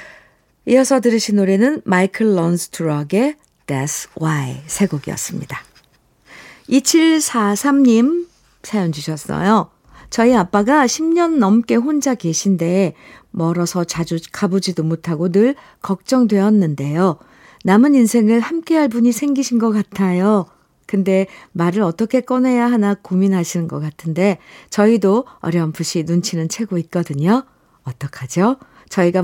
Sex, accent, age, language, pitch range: female, native, 50-69, Korean, 175-235 Hz